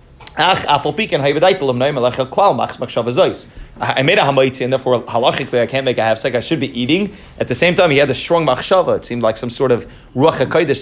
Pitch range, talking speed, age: 120-165 Hz, 180 wpm, 30-49